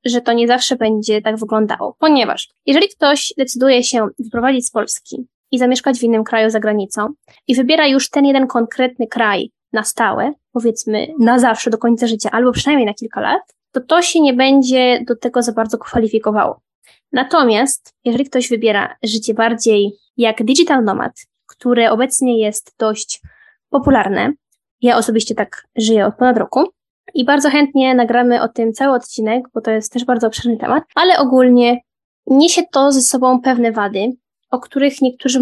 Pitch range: 225-270 Hz